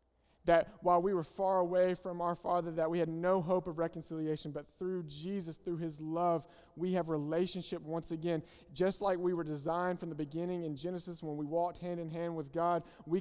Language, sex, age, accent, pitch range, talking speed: English, male, 30-49, American, 170-210 Hz, 210 wpm